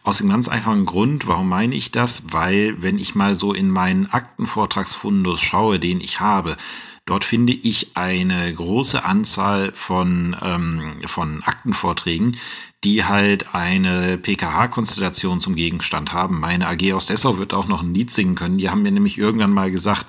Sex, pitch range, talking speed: male, 90-115 Hz, 165 wpm